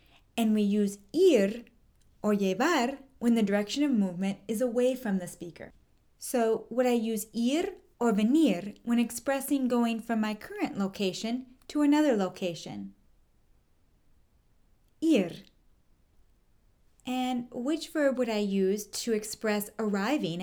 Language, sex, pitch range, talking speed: English, female, 200-275 Hz, 125 wpm